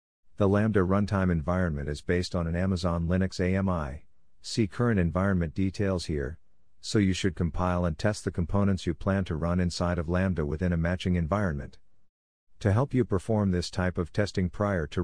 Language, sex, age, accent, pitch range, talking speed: English, male, 50-69, American, 85-100 Hz, 180 wpm